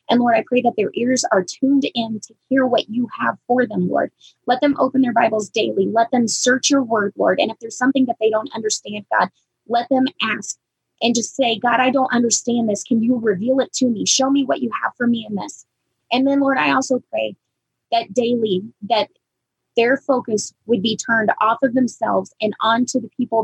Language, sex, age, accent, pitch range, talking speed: English, female, 20-39, American, 225-265 Hz, 220 wpm